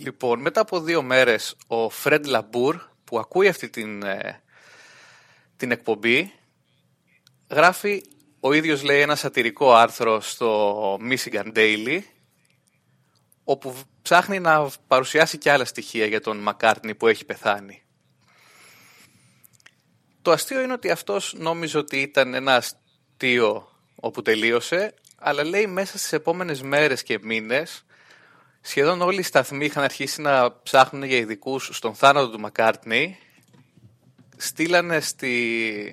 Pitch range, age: 115-150 Hz, 30-49